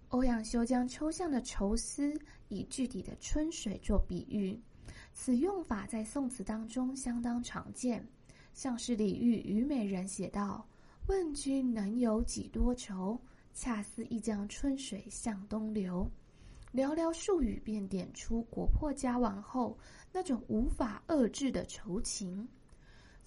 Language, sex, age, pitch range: Chinese, female, 20-39, 205-260 Hz